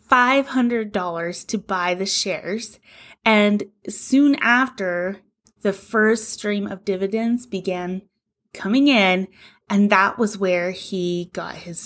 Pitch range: 190-240 Hz